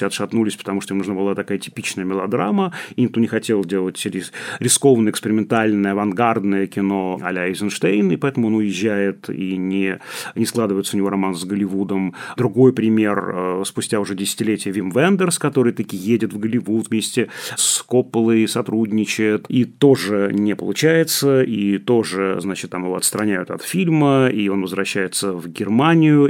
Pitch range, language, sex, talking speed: 100-120 Hz, Russian, male, 150 wpm